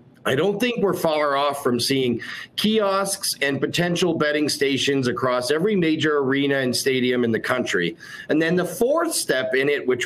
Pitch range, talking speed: 130-180 Hz, 180 wpm